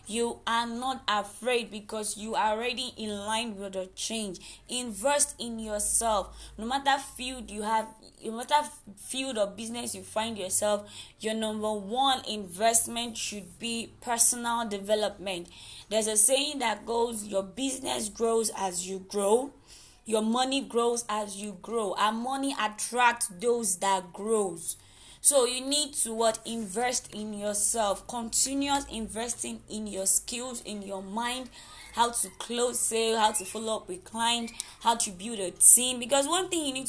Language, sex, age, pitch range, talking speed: English, female, 20-39, 200-245 Hz, 155 wpm